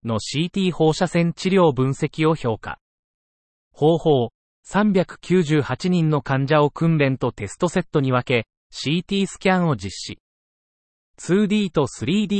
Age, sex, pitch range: 30-49, male, 120-175 Hz